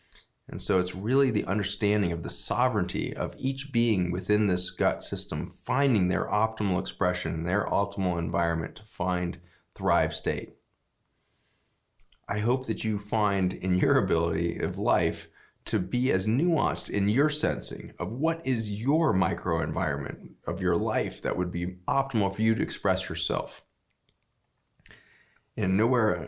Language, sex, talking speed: English, male, 145 wpm